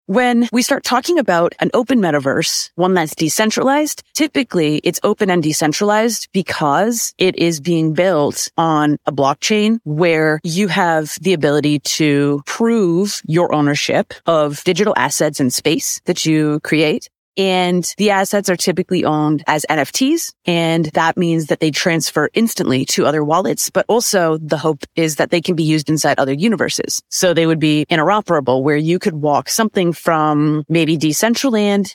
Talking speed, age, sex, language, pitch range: 160 wpm, 30-49, female, English, 155-200 Hz